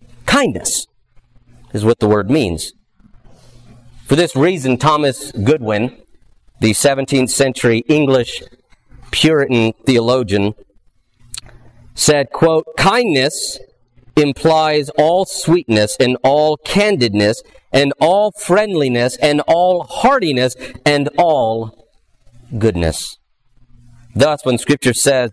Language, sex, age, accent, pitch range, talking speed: English, male, 40-59, American, 120-165 Hz, 90 wpm